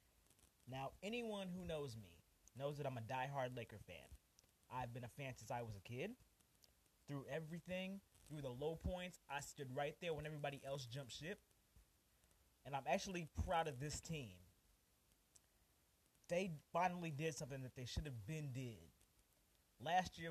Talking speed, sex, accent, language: 165 wpm, male, American, English